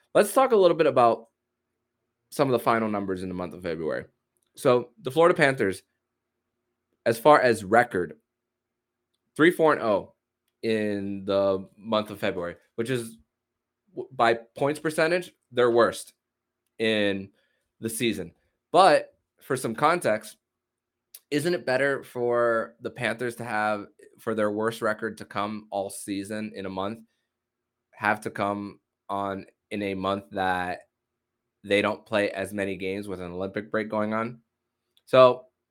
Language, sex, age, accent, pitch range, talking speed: English, male, 20-39, American, 100-120 Hz, 140 wpm